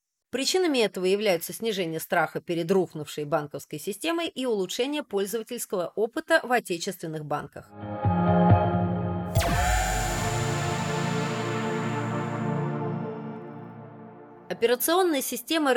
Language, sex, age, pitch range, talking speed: Russian, female, 30-49, 165-240 Hz, 70 wpm